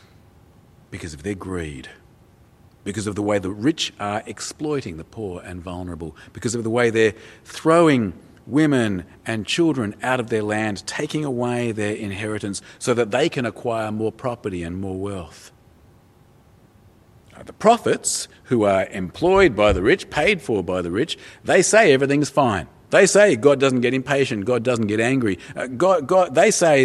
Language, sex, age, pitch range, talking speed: English, male, 40-59, 95-135 Hz, 165 wpm